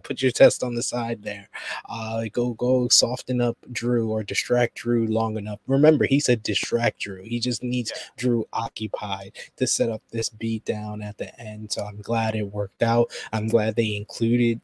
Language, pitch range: English, 110-120 Hz